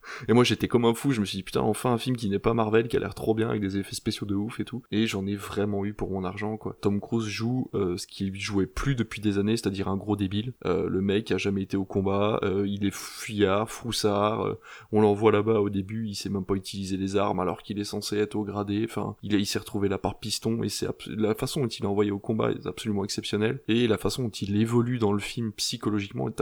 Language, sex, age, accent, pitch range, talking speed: French, male, 20-39, French, 100-115 Hz, 275 wpm